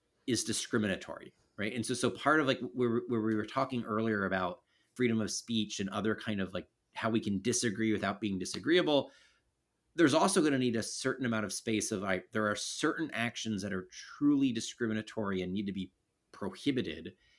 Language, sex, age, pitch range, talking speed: English, male, 30-49, 100-120 Hz, 195 wpm